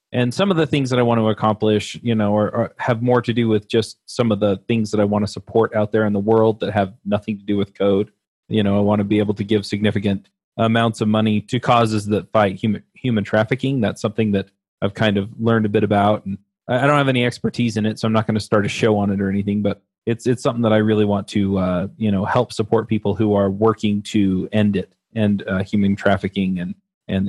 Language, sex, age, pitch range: English, male, 30-49, 100-115 Hz